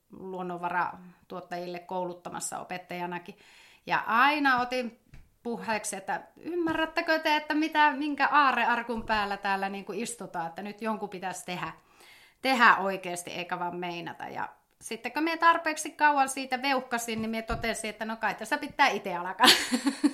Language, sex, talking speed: Finnish, female, 145 wpm